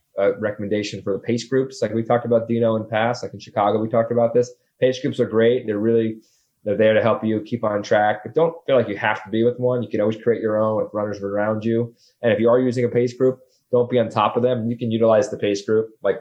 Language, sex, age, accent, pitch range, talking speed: English, male, 30-49, American, 105-145 Hz, 280 wpm